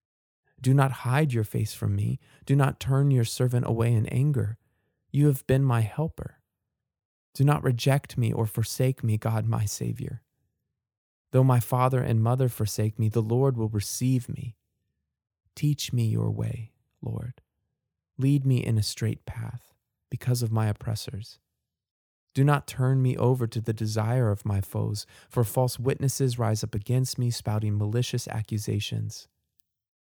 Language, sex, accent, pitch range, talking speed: English, male, American, 105-125 Hz, 155 wpm